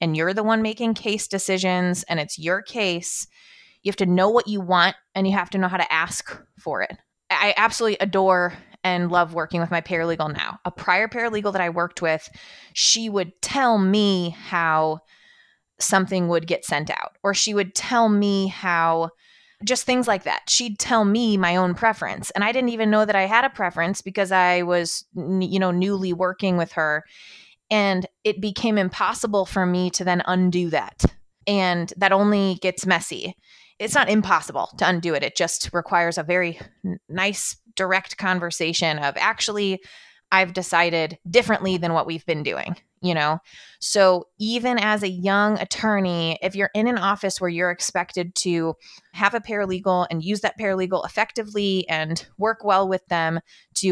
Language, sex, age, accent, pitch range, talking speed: English, female, 20-39, American, 175-205 Hz, 180 wpm